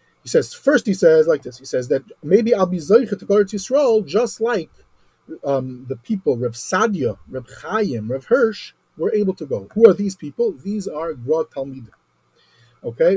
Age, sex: 30-49, male